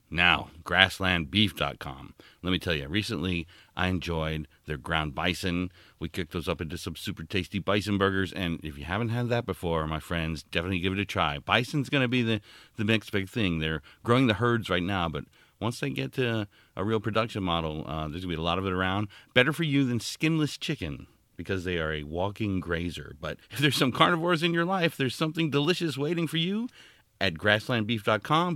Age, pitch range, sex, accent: 40-59, 90-140 Hz, male, American